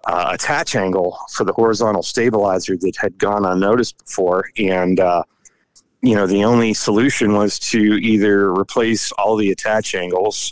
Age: 40-59